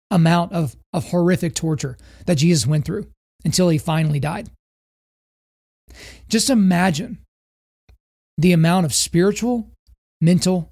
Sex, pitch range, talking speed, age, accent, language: male, 150-185 Hz, 110 wpm, 30-49, American, English